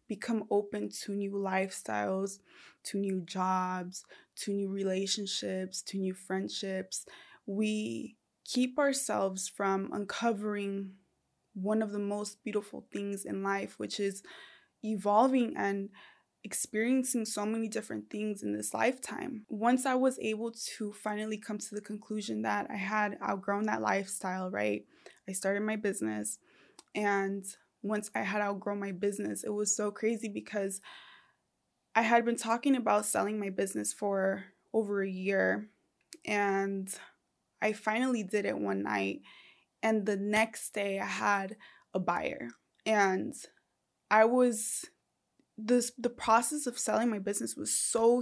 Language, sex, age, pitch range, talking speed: English, female, 20-39, 195-225 Hz, 135 wpm